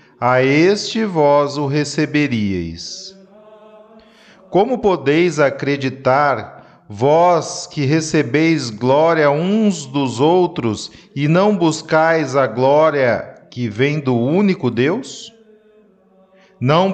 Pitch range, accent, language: 135-190 Hz, Brazilian, Portuguese